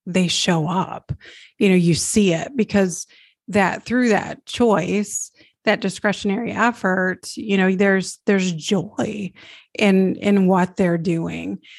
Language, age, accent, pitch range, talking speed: English, 30-49, American, 185-210 Hz, 130 wpm